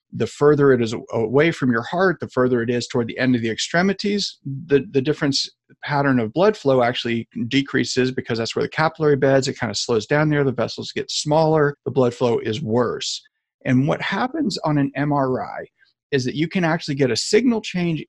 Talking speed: 210 wpm